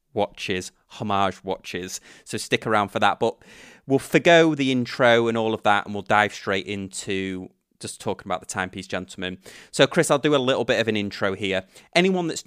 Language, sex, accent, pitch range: English, male, British, 95-120 Hz